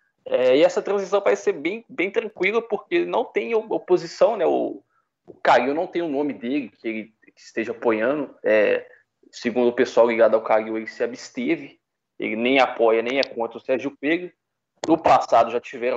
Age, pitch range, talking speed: 20-39, 120-165 Hz, 190 wpm